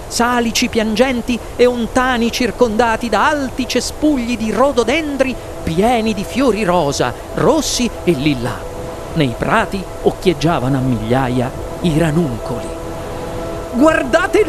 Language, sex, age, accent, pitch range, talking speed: Italian, male, 40-59, native, 240-330 Hz, 105 wpm